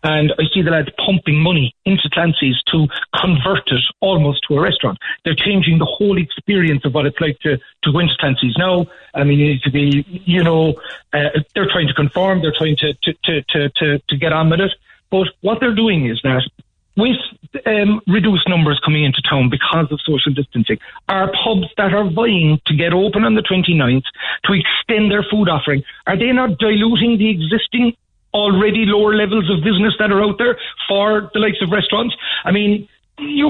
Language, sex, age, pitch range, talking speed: English, male, 40-59, 150-205 Hz, 195 wpm